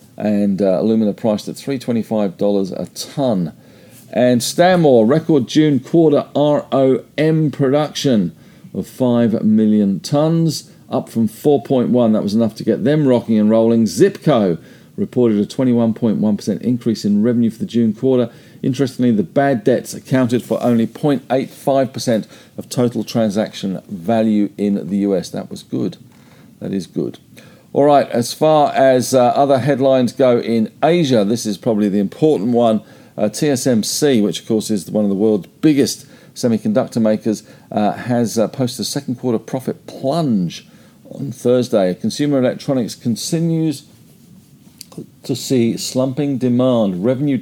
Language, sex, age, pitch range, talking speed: English, male, 50-69, 115-145 Hz, 140 wpm